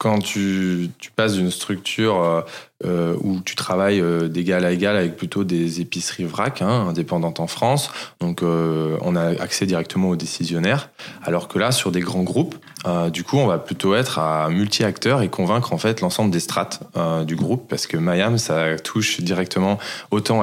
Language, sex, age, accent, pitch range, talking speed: French, male, 20-39, French, 85-100 Hz, 190 wpm